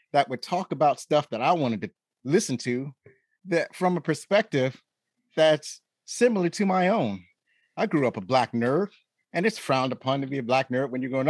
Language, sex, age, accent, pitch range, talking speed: English, male, 30-49, American, 130-195 Hz, 200 wpm